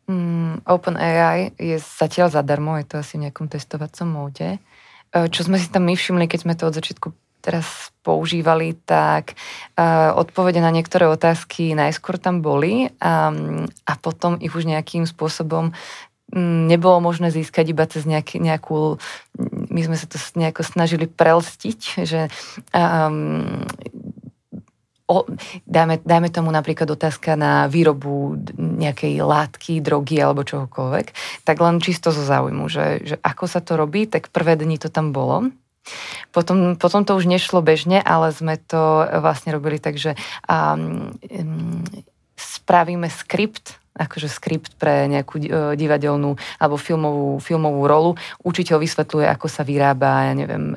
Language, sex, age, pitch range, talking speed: Slovak, female, 20-39, 150-170 Hz, 140 wpm